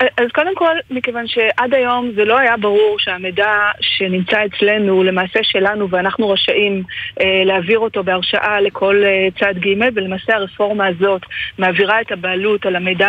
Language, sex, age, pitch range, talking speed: Hebrew, female, 30-49, 185-220 Hz, 145 wpm